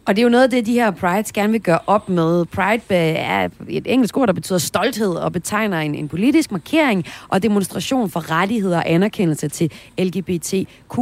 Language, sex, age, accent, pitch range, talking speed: Danish, female, 30-49, native, 150-195 Hz, 200 wpm